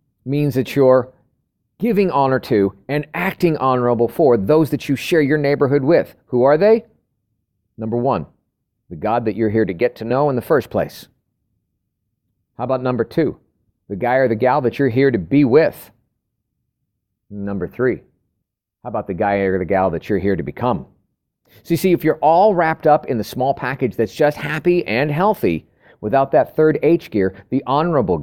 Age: 40-59